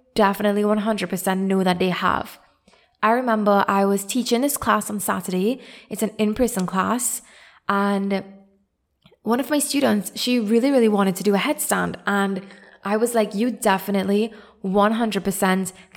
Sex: female